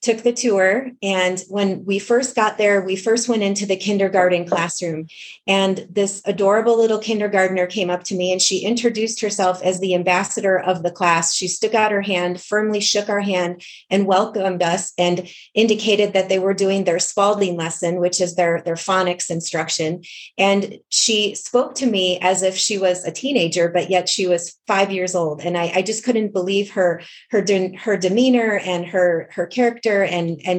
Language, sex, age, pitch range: English, female, 30-49, 180-220 Hz